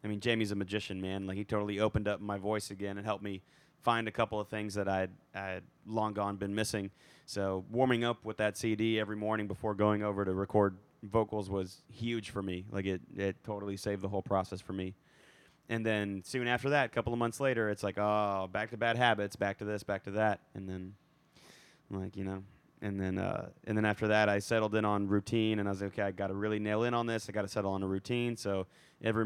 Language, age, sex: English, 20-39, male